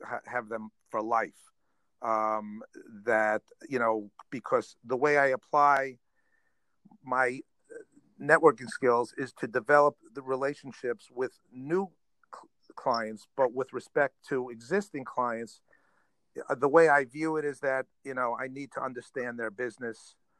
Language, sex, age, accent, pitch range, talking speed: English, male, 50-69, American, 115-135 Hz, 130 wpm